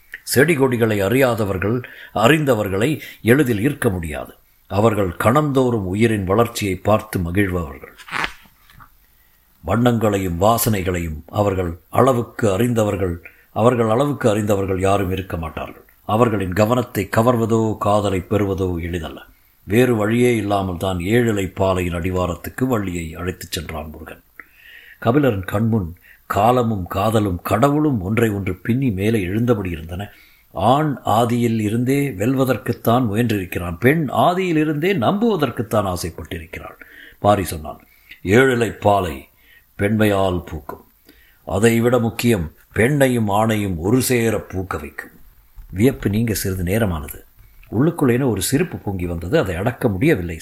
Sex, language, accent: male, Tamil, native